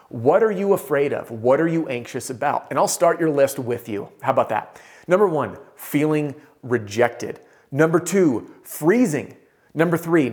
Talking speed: 170 wpm